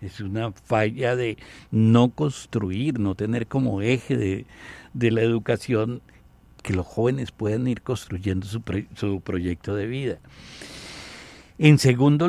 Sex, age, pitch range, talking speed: male, 60-79, 105-145 Hz, 135 wpm